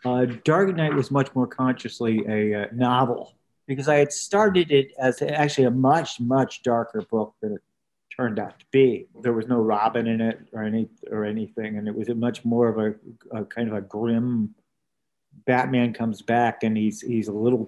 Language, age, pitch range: English, 50-69, 115-150 Hz